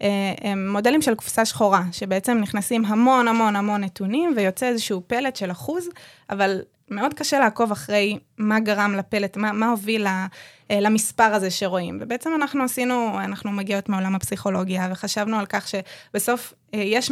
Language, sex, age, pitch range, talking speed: Hebrew, female, 20-39, 200-240 Hz, 145 wpm